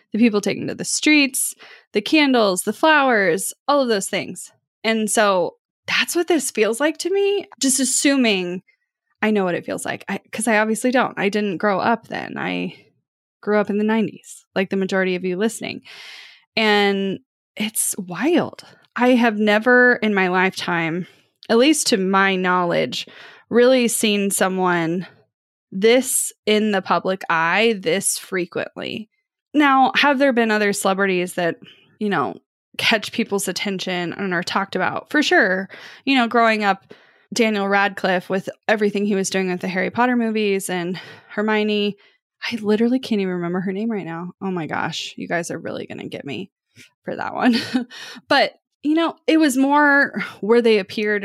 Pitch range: 190-245 Hz